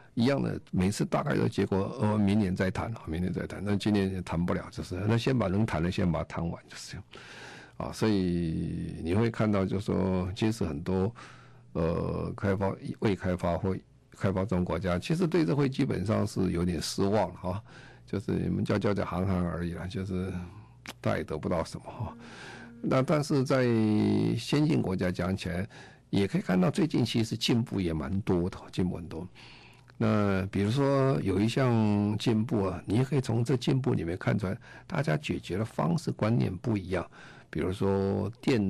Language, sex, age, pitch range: Chinese, male, 50-69, 90-115 Hz